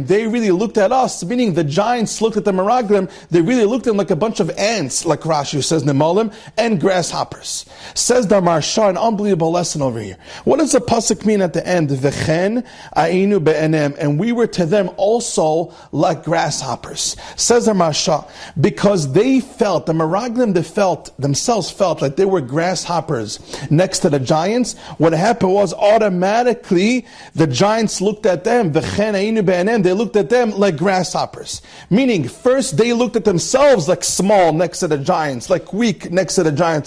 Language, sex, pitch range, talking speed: English, male, 165-220 Hz, 175 wpm